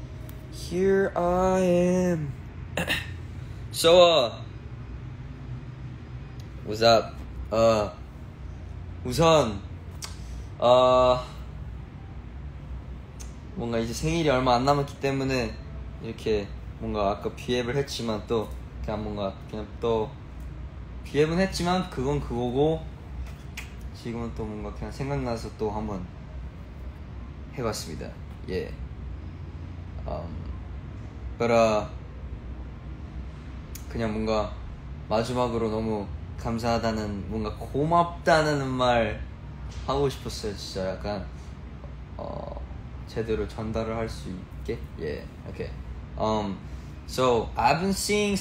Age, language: 20-39, Korean